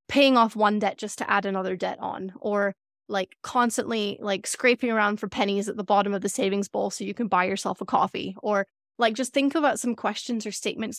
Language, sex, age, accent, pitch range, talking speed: English, female, 20-39, American, 200-235 Hz, 225 wpm